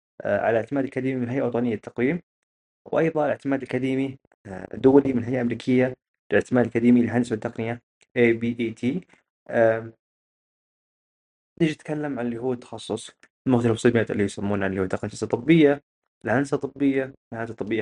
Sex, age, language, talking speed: male, 20-39, Arabic, 120 wpm